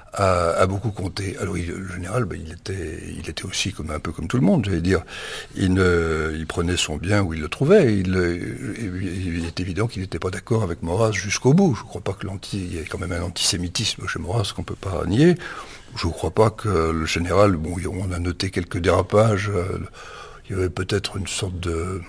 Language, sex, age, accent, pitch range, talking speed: French, male, 60-79, French, 85-105 Hz, 230 wpm